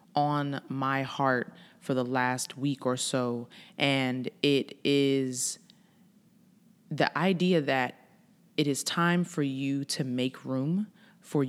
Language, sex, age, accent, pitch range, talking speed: English, female, 20-39, American, 135-185 Hz, 125 wpm